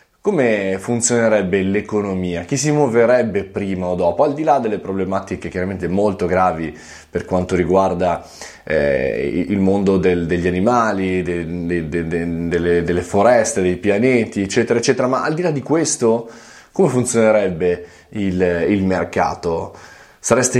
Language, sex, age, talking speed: Italian, male, 20-39, 130 wpm